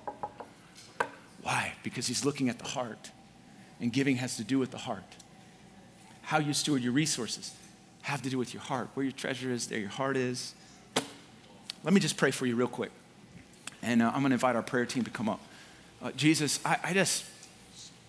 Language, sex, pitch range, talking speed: English, male, 125-150 Hz, 190 wpm